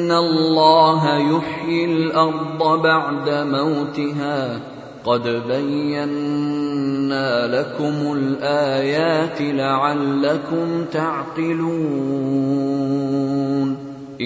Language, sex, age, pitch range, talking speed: Arabic, male, 30-49, 145-165 Hz, 50 wpm